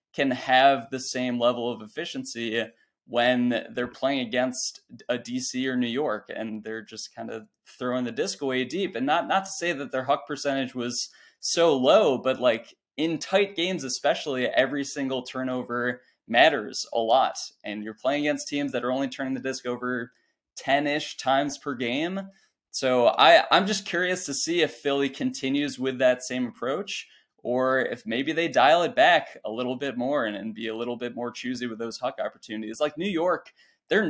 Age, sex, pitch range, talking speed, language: 20-39, male, 120-145 Hz, 185 wpm, English